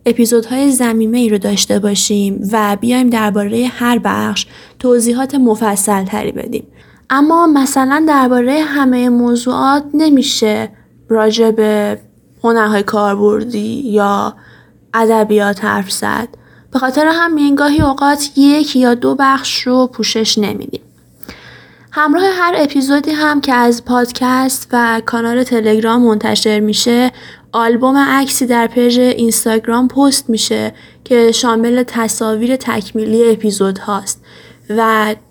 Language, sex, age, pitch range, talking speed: Persian, female, 10-29, 215-255 Hz, 110 wpm